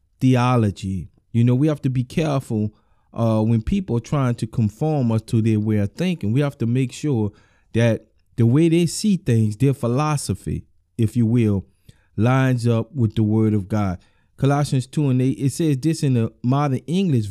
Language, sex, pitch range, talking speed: English, male, 110-140 Hz, 190 wpm